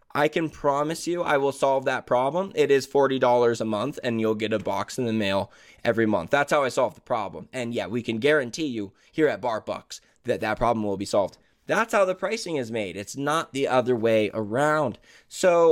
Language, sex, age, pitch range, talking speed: English, male, 20-39, 120-160 Hz, 225 wpm